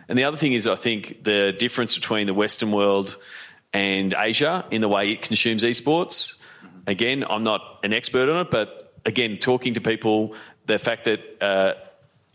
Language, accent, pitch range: English, Australian, 100-115 Hz